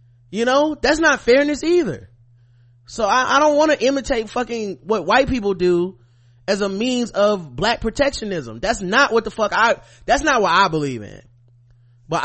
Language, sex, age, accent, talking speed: English, male, 20-39, American, 180 wpm